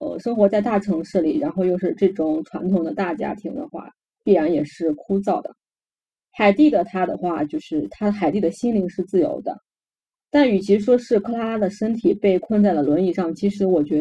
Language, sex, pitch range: Chinese, female, 180-245 Hz